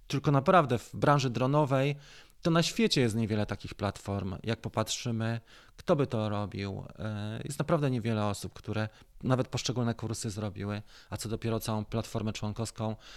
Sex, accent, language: male, native, Polish